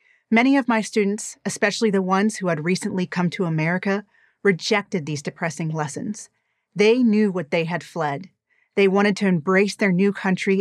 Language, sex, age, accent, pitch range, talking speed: English, female, 30-49, American, 180-210 Hz, 170 wpm